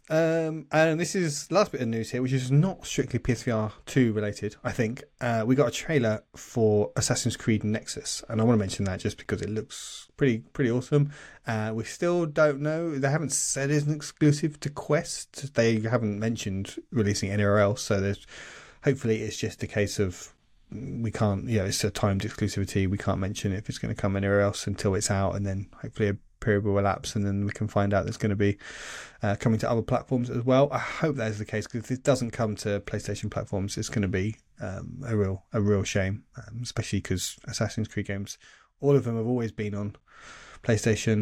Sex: male